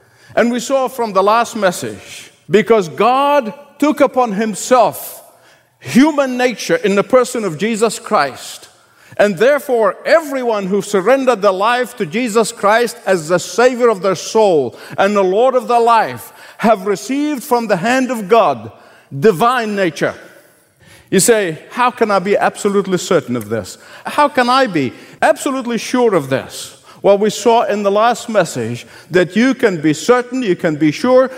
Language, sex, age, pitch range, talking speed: English, male, 50-69, 190-250 Hz, 165 wpm